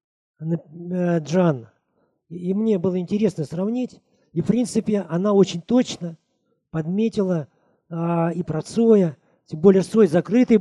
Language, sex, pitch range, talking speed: Russian, male, 160-205 Hz, 120 wpm